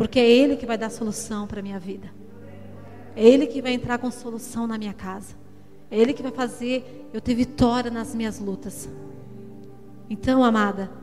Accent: Brazilian